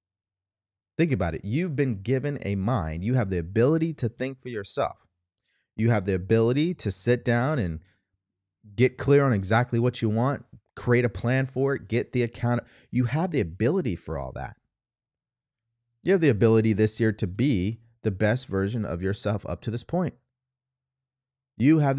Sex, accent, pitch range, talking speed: male, American, 100-130 Hz, 175 wpm